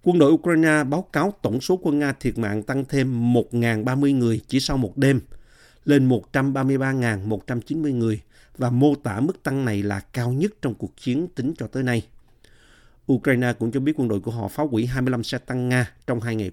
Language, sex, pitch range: Vietnamese, male, 115-145 Hz